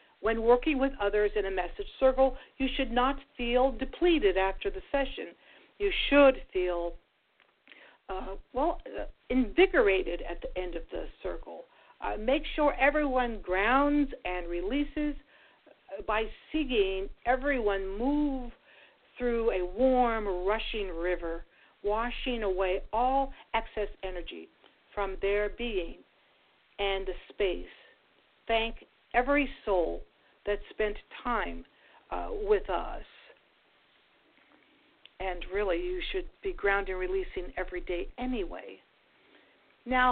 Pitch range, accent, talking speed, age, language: 195-280 Hz, American, 115 wpm, 60-79, English